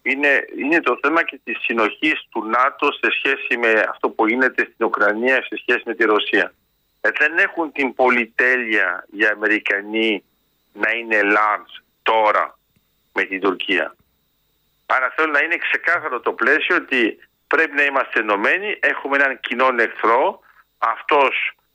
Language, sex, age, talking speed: Greek, male, 50-69, 145 wpm